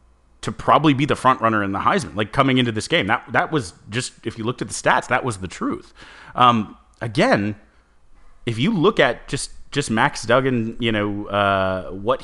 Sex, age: male, 30-49